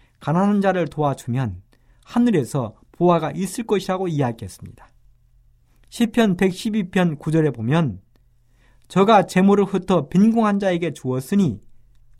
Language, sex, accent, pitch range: Korean, male, native, 120-185 Hz